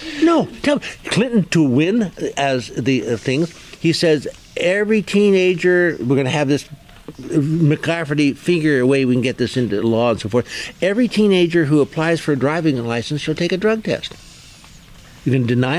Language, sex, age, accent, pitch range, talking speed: English, male, 60-79, American, 125-175 Hz, 185 wpm